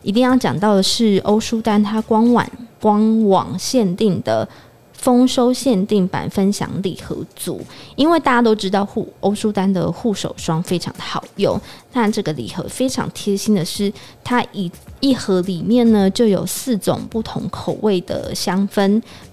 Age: 20-39